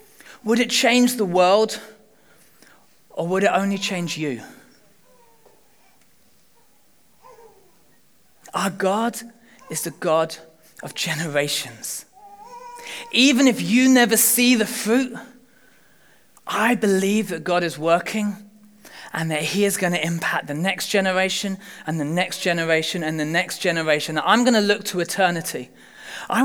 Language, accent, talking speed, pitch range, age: English, British, 125 wpm, 180-250 Hz, 30-49